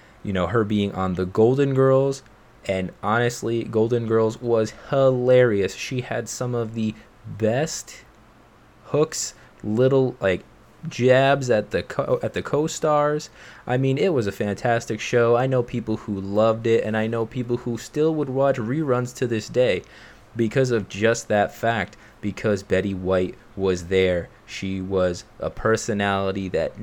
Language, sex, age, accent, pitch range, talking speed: English, male, 20-39, American, 100-125 Hz, 150 wpm